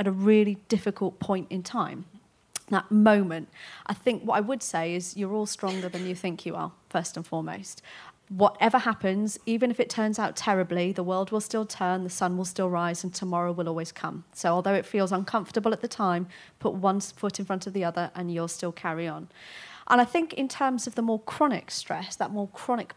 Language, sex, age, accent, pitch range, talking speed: English, female, 30-49, British, 180-225 Hz, 220 wpm